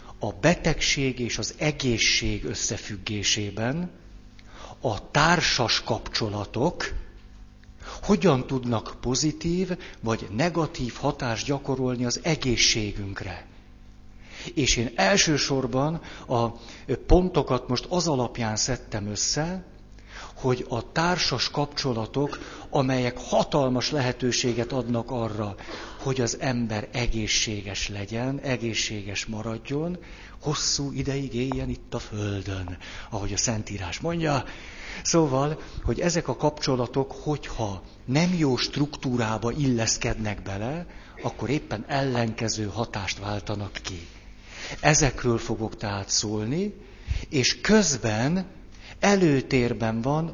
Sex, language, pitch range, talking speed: male, Hungarian, 105-140 Hz, 95 wpm